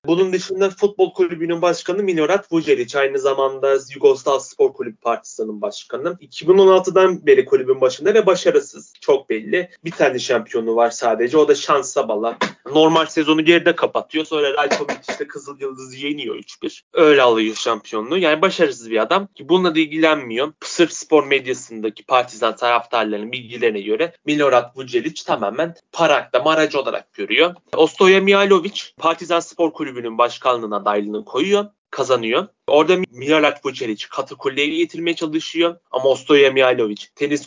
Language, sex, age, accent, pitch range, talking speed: Turkish, male, 30-49, native, 130-190 Hz, 140 wpm